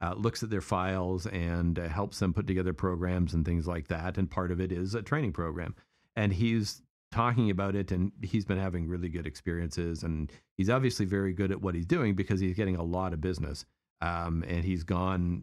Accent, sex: American, male